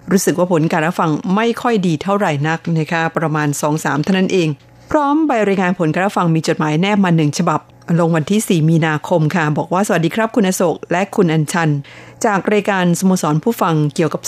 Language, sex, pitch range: Thai, female, 160-210 Hz